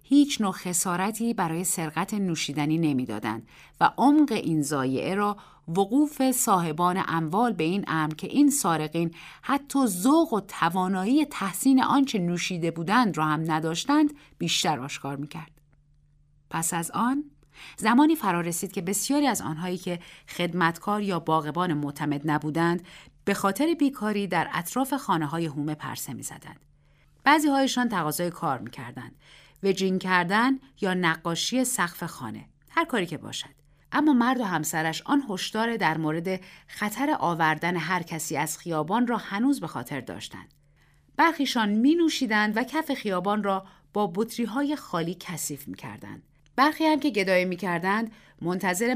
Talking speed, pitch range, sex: 140 wpm, 155-235 Hz, female